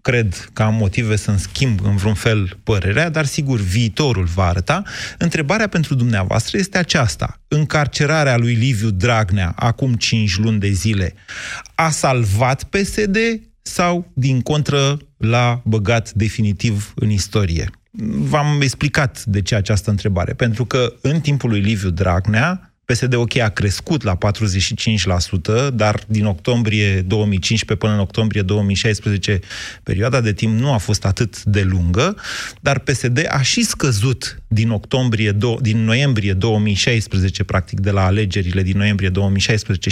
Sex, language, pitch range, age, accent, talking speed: male, Romanian, 100-140 Hz, 30-49, native, 140 wpm